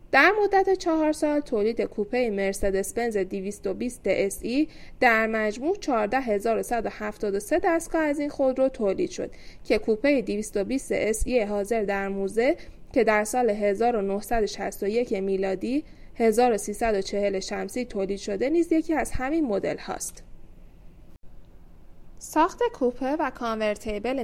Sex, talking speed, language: female, 110 wpm, Persian